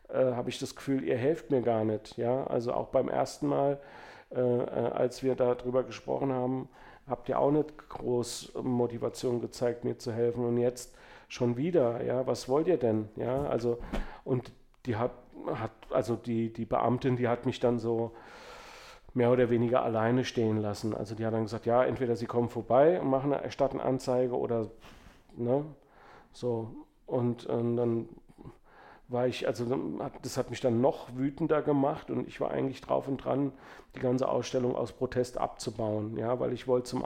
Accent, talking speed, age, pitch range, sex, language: German, 175 wpm, 40-59, 120-135 Hz, male, German